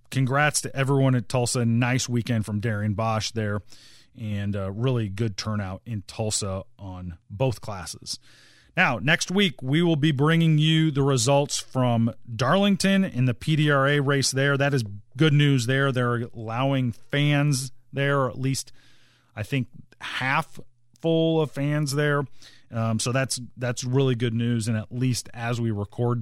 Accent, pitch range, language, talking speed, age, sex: American, 115-150 Hz, English, 160 wpm, 40-59, male